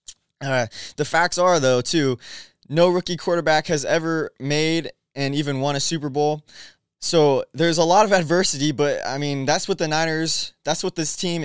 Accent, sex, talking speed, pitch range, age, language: American, male, 185 wpm, 135-165 Hz, 20-39, English